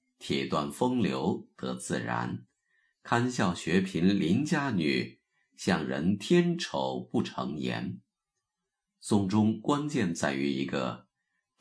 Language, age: Chinese, 50-69